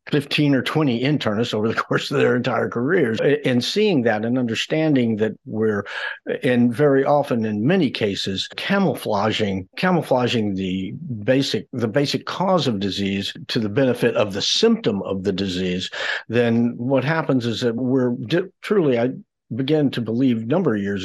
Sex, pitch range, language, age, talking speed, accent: male, 115-135 Hz, English, 50-69, 165 wpm, American